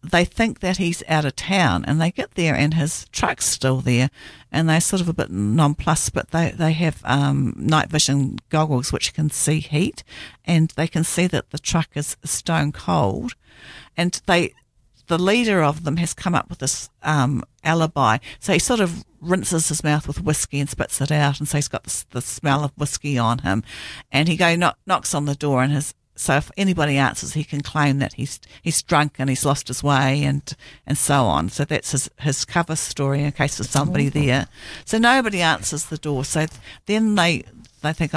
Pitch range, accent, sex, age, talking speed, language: 135-160 Hz, Australian, female, 50-69, 210 wpm, English